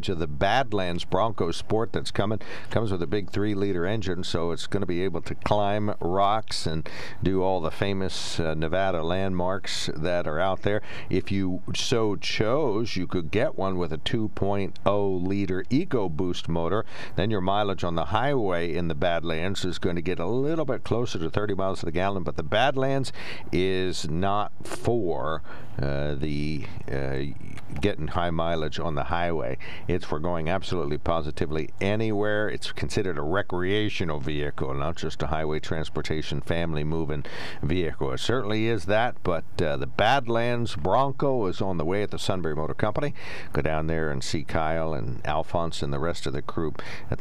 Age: 50-69